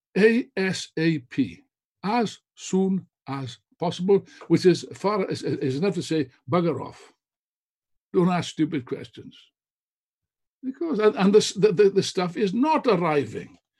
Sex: male